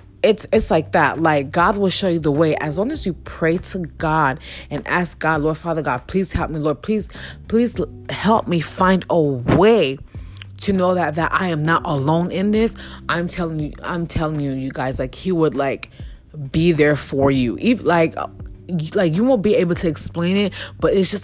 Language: English